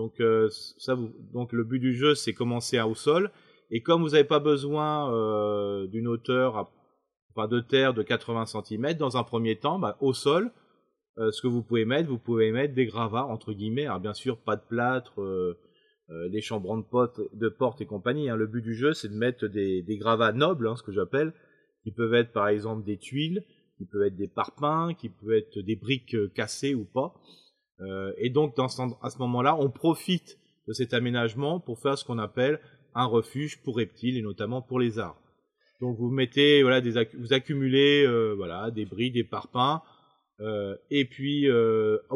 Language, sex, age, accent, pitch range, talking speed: French, male, 30-49, French, 110-140 Hz, 205 wpm